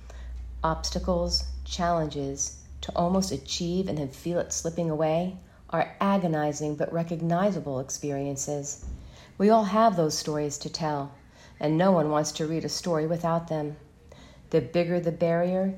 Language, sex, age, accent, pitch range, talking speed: English, female, 40-59, American, 145-175 Hz, 140 wpm